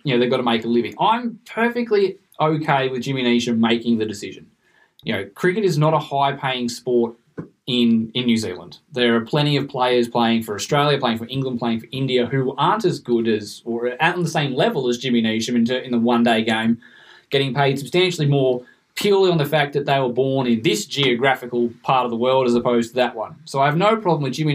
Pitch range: 120-145 Hz